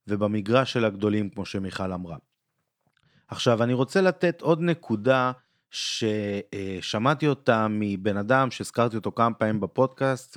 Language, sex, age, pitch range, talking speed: Hebrew, male, 30-49, 100-135 Hz, 120 wpm